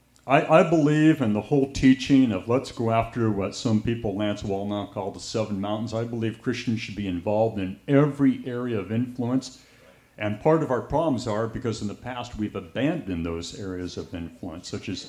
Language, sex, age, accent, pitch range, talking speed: English, male, 50-69, American, 100-130 Hz, 195 wpm